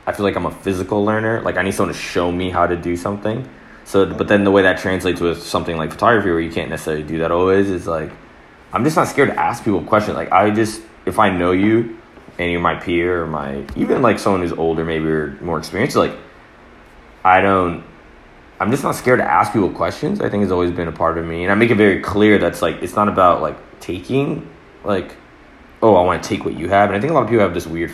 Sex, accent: male, American